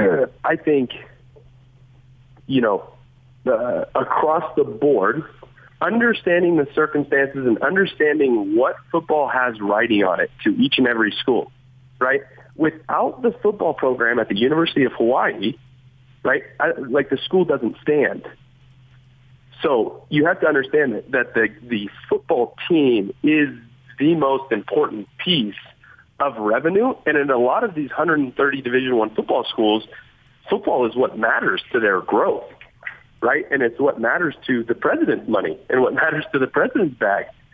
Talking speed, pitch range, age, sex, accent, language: 150 wpm, 125-185 Hz, 30-49, male, American, English